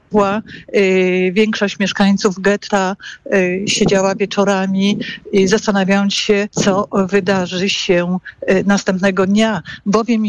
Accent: native